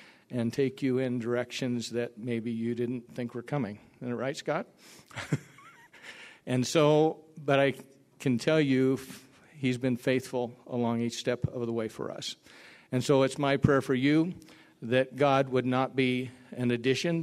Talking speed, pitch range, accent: 165 wpm, 120-135 Hz, American